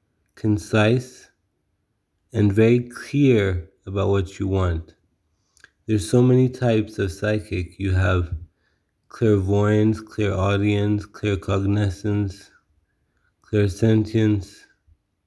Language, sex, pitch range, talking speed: English, male, 95-110 Hz, 80 wpm